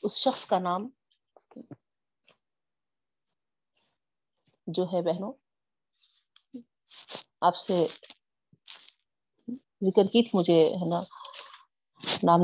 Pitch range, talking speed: 190-250 Hz, 70 wpm